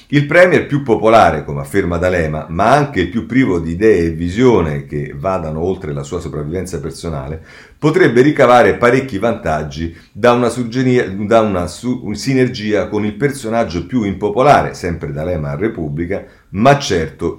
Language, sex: Italian, male